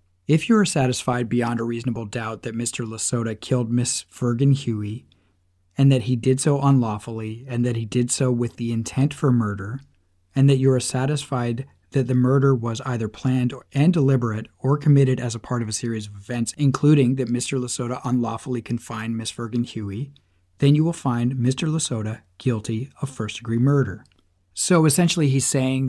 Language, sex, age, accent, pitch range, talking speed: English, male, 40-59, American, 115-140 Hz, 180 wpm